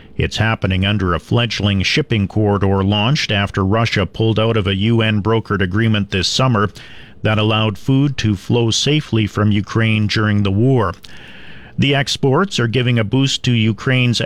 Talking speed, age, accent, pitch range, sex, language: 155 wpm, 50-69, American, 105-125 Hz, male, English